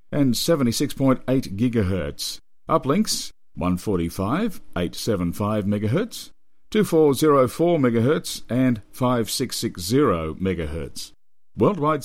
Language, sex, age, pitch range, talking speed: English, male, 50-69, 95-140 Hz, 60 wpm